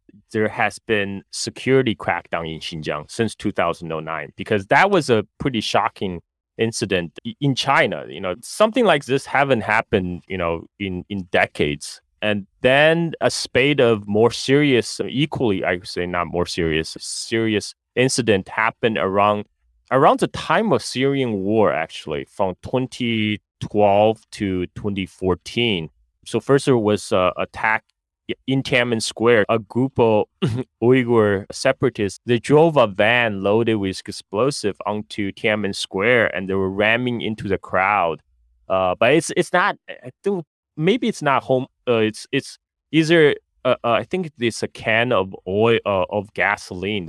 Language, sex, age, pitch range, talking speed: English, male, 30-49, 95-130 Hz, 150 wpm